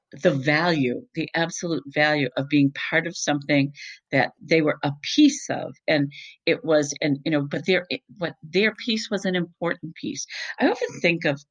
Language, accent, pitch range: English, American, 140-175 Hz